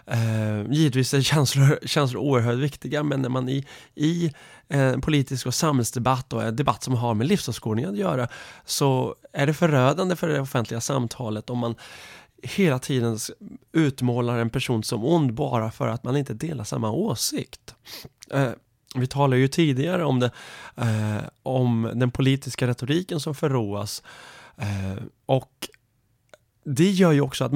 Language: Swedish